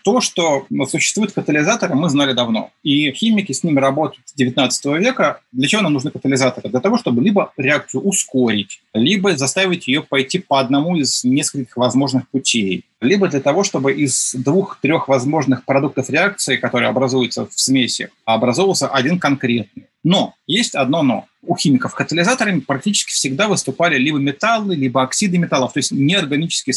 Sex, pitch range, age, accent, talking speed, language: male, 130-185 Hz, 30-49, native, 155 wpm, Russian